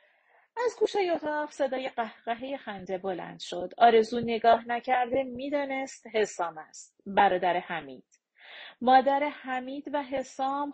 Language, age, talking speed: Persian, 40-59, 110 wpm